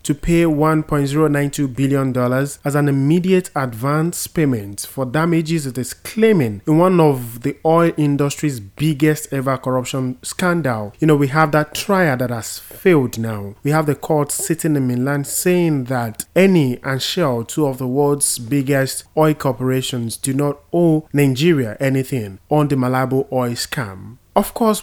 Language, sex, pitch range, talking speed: English, male, 125-160 Hz, 160 wpm